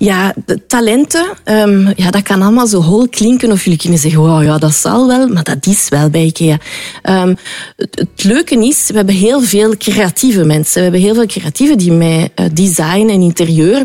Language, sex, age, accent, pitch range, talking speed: Dutch, female, 30-49, Belgian, 170-240 Hz, 180 wpm